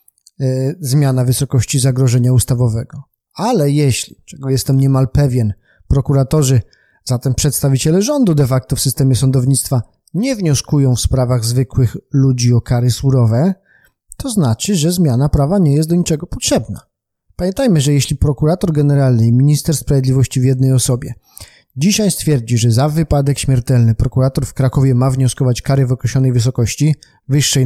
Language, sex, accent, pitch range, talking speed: Polish, male, native, 130-155 Hz, 140 wpm